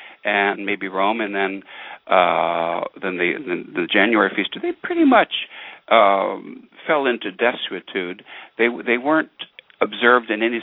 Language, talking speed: English, 135 wpm